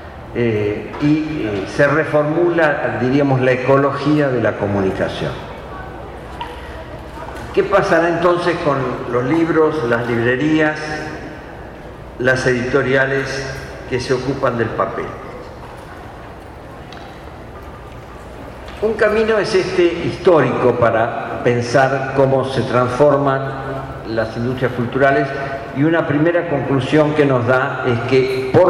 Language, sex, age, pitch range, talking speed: Spanish, male, 50-69, 120-150 Hz, 100 wpm